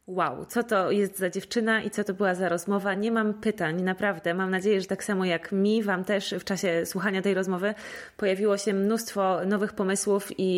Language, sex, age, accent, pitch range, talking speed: Polish, female, 20-39, native, 180-205 Hz, 205 wpm